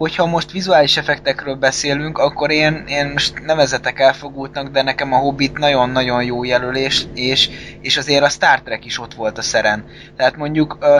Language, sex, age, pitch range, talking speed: Hungarian, male, 20-39, 125-145 Hz, 170 wpm